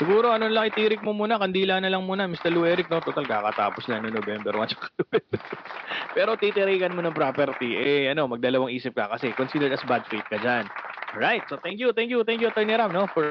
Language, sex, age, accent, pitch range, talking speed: English, male, 20-39, Filipino, 135-190 Hz, 220 wpm